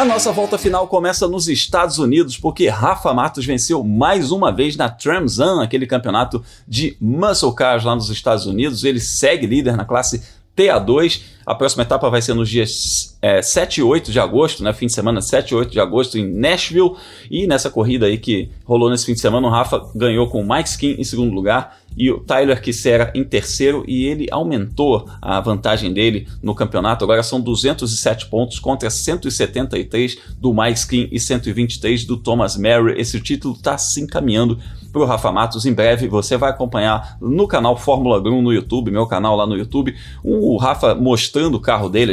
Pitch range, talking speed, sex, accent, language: 110-130 Hz, 190 wpm, male, Brazilian, Portuguese